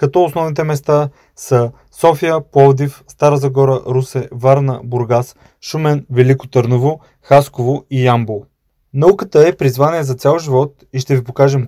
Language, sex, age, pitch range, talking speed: Bulgarian, male, 20-39, 130-150 Hz, 140 wpm